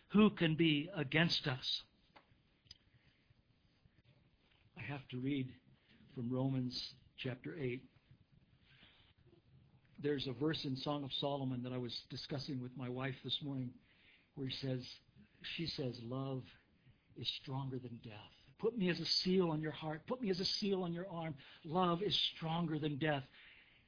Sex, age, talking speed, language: male, 60-79, 150 wpm, English